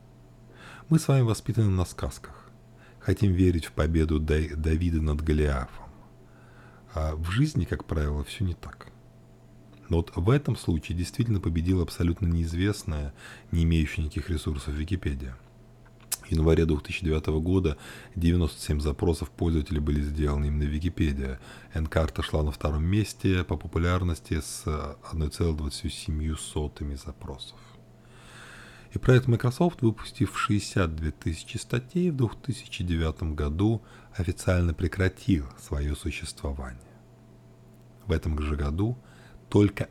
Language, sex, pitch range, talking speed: Russian, male, 75-100 Hz, 115 wpm